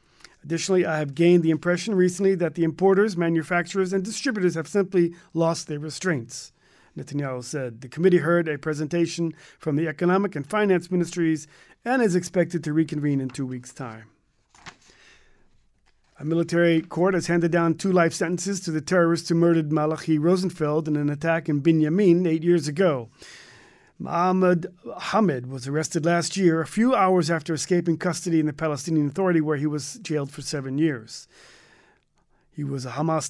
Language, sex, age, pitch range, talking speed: English, male, 40-59, 150-185 Hz, 165 wpm